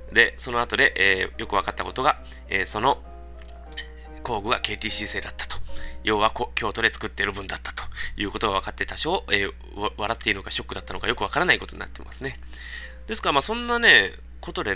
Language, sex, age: Japanese, male, 20-39